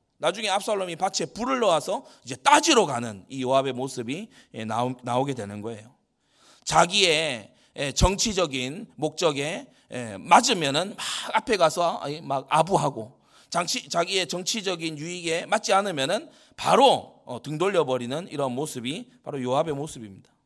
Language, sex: Korean, male